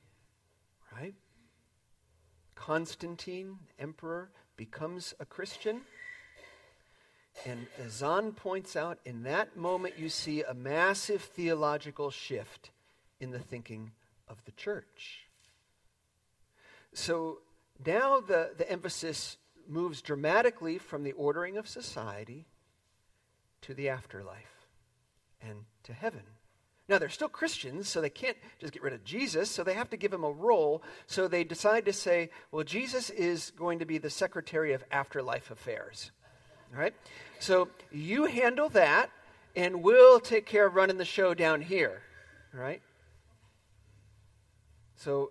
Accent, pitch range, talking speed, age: American, 120-200 Hz, 130 wpm, 50-69